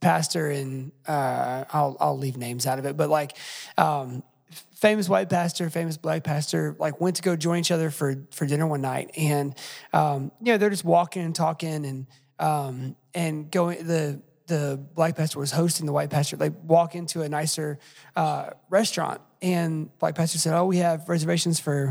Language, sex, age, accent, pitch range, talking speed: English, male, 20-39, American, 145-175 Hz, 190 wpm